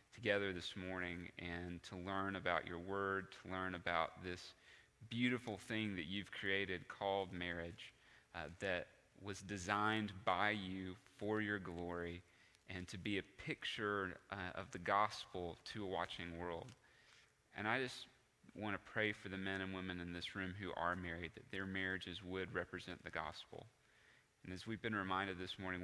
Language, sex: English, male